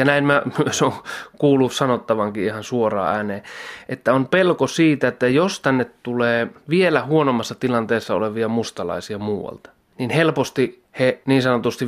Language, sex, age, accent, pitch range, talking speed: Finnish, male, 30-49, native, 110-135 Hz, 140 wpm